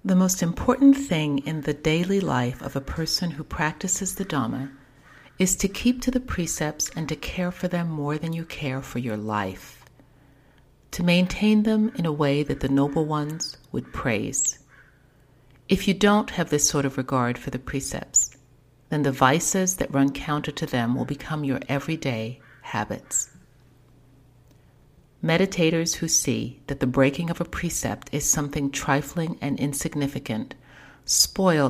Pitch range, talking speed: 130-170 Hz, 160 wpm